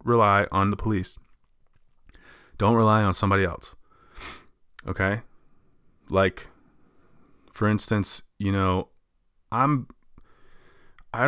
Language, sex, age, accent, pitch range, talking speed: English, male, 20-39, American, 95-115 Hz, 90 wpm